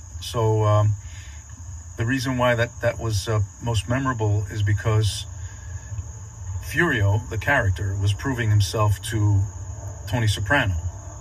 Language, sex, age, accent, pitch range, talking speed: English, male, 40-59, American, 95-110 Hz, 120 wpm